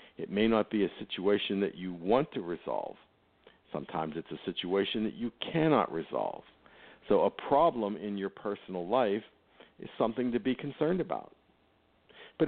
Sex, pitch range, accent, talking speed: male, 100-135 Hz, American, 160 wpm